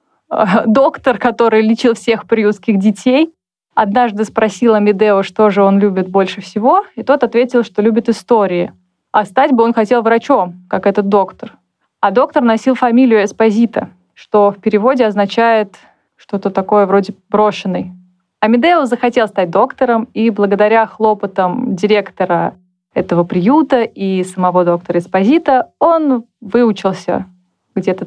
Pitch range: 195-240 Hz